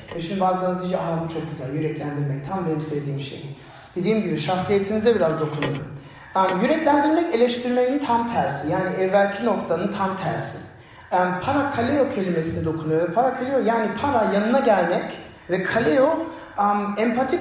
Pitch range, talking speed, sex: 155-240 Hz, 130 wpm, male